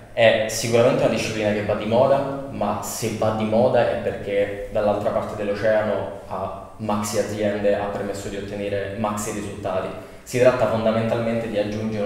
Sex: male